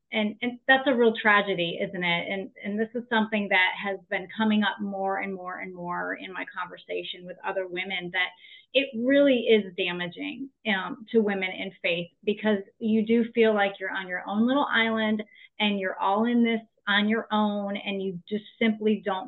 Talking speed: 195 wpm